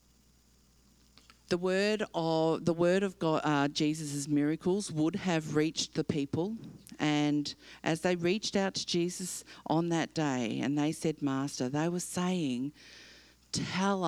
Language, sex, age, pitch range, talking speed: English, female, 50-69, 130-175 Hz, 140 wpm